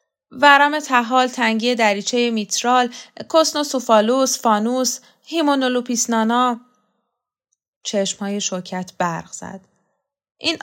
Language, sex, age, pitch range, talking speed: Persian, female, 10-29, 185-250 Hz, 80 wpm